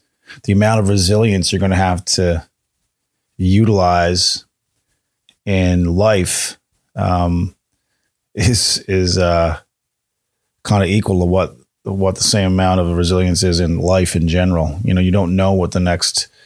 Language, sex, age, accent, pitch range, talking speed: English, male, 30-49, American, 85-100 Hz, 145 wpm